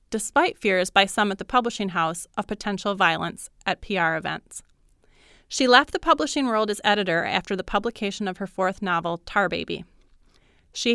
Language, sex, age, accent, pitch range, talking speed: English, female, 30-49, American, 185-240 Hz, 170 wpm